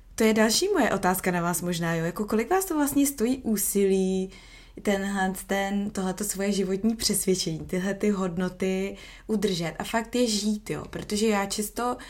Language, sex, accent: Czech, female, native